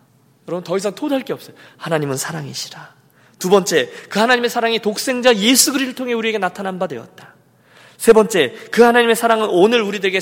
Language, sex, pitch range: Korean, male, 160-245 Hz